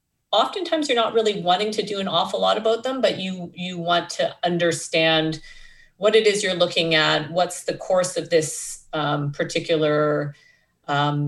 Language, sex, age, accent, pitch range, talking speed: English, female, 40-59, American, 145-175 Hz, 170 wpm